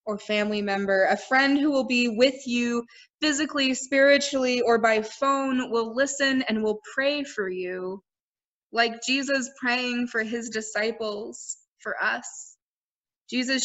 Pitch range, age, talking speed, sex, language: 215-260 Hz, 20-39, 130 wpm, female, English